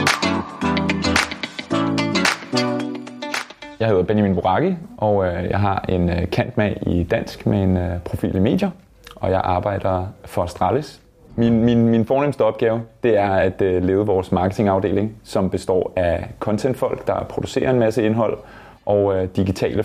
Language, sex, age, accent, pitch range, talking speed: Danish, male, 20-39, native, 95-105 Hz, 135 wpm